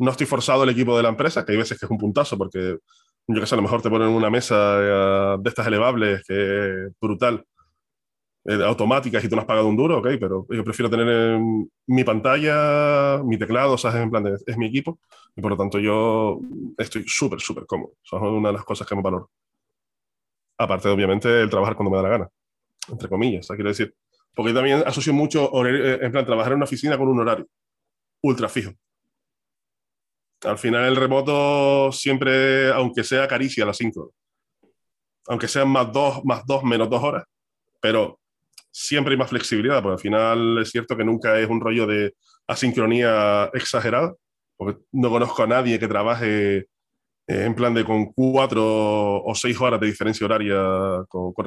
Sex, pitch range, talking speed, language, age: male, 105-130 Hz, 190 wpm, Spanish, 20-39